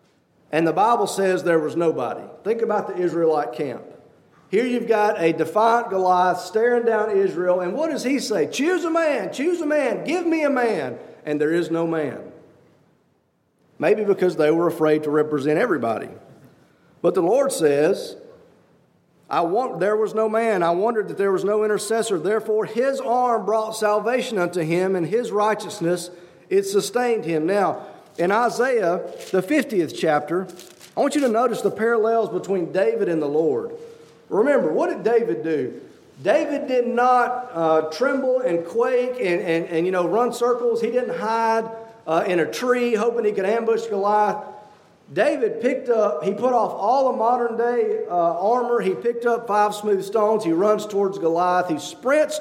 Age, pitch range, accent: 40-59, 180-245 Hz, American